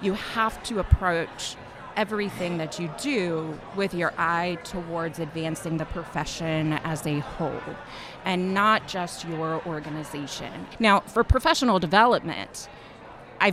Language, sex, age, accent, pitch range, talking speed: English, female, 30-49, American, 165-205 Hz, 125 wpm